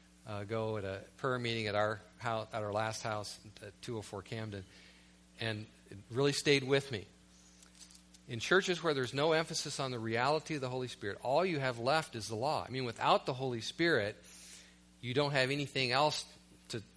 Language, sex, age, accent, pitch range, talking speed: English, male, 40-59, American, 90-140 Hz, 190 wpm